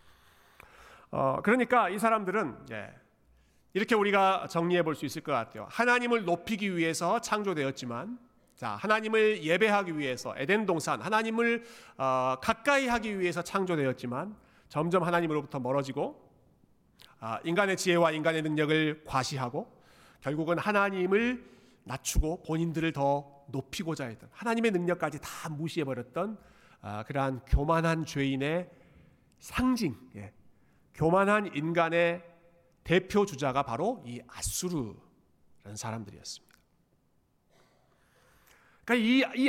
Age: 40-59